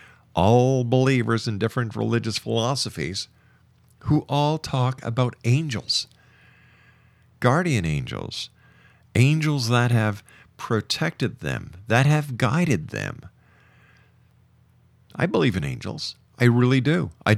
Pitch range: 110-135 Hz